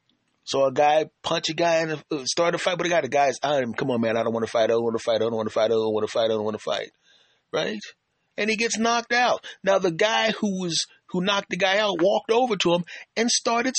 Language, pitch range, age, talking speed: English, 145-210 Hz, 30-49, 290 wpm